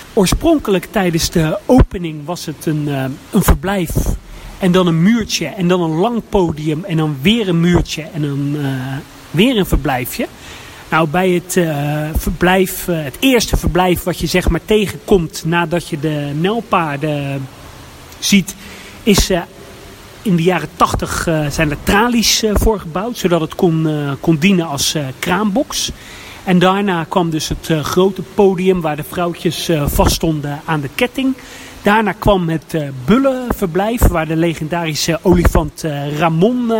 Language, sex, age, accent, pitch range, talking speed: Dutch, male, 40-59, Dutch, 155-195 Hz, 145 wpm